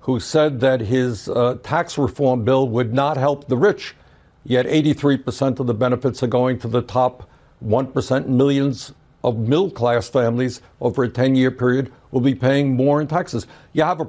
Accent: American